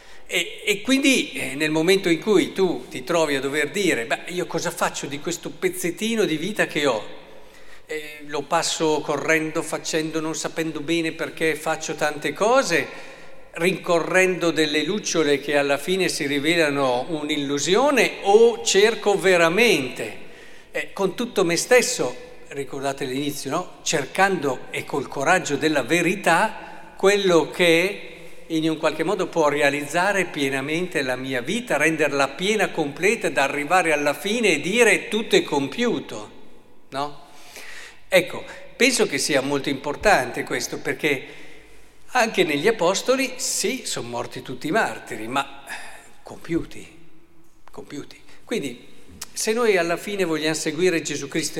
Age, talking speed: 50-69, 135 wpm